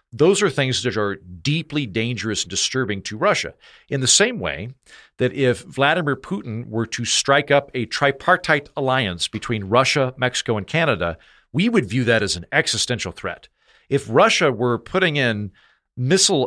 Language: English